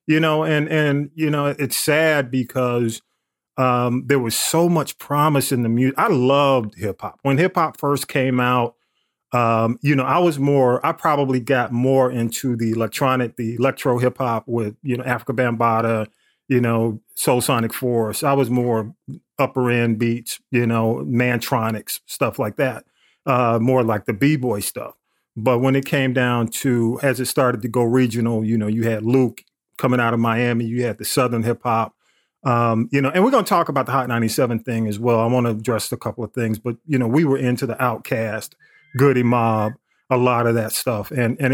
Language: English